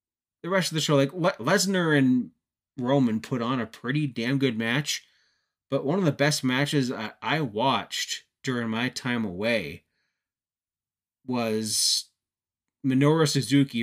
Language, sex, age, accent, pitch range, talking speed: English, male, 30-49, American, 110-140 Hz, 145 wpm